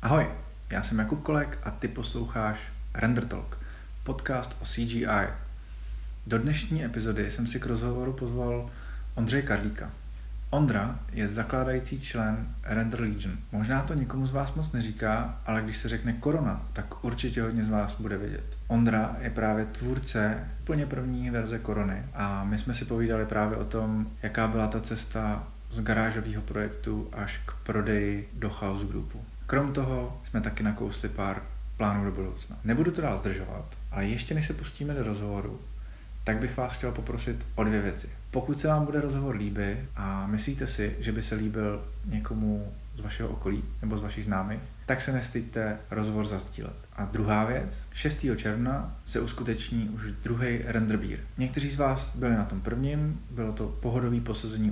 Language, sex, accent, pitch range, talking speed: Czech, male, native, 105-125 Hz, 165 wpm